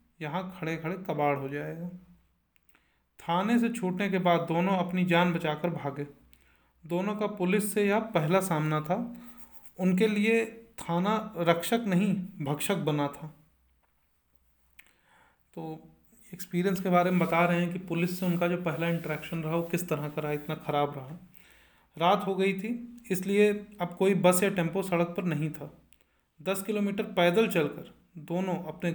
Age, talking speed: 40-59, 160 wpm